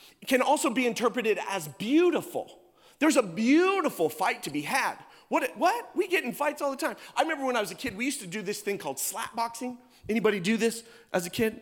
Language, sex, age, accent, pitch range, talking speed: English, male, 30-49, American, 215-315 Hz, 225 wpm